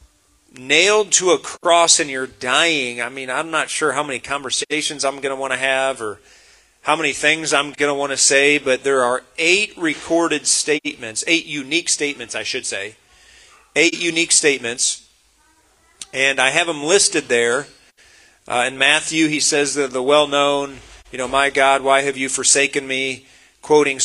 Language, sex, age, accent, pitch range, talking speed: English, male, 40-59, American, 130-155 Hz, 175 wpm